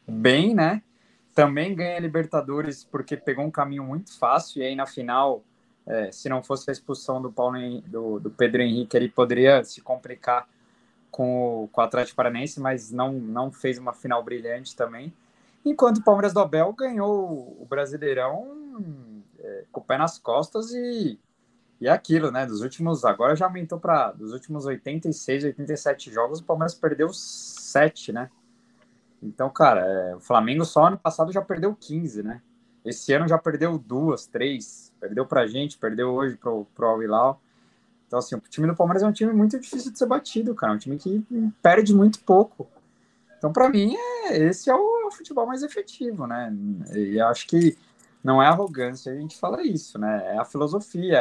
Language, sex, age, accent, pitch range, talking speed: Portuguese, male, 20-39, Brazilian, 125-185 Hz, 180 wpm